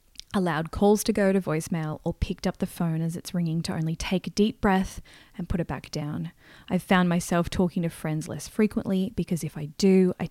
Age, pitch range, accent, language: 20-39, 160-195 Hz, Australian, English